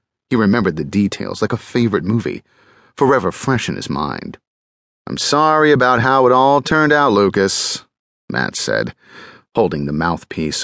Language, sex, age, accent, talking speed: English, male, 40-59, American, 150 wpm